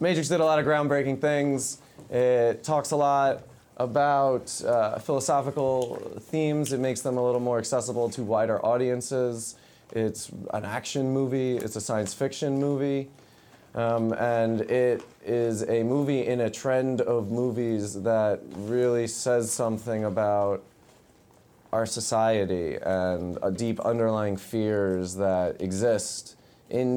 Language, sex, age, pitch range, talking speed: English, male, 20-39, 100-125 Hz, 130 wpm